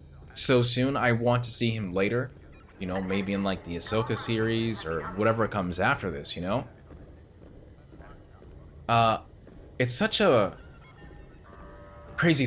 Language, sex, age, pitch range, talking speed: English, male, 20-39, 90-115 Hz, 135 wpm